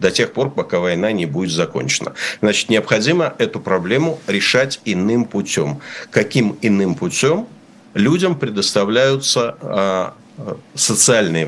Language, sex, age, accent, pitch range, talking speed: Russian, male, 50-69, native, 95-125 Hz, 110 wpm